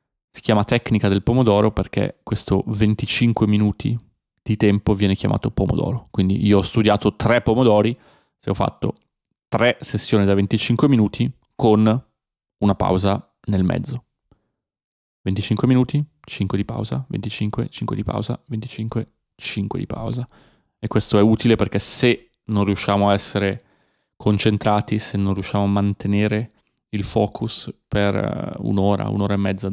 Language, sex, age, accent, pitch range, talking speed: Italian, male, 20-39, native, 100-115 Hz, 140 wpm